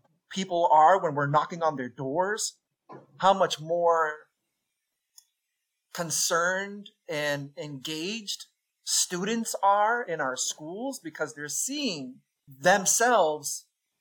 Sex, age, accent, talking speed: male, 30-49, American, 100 wpm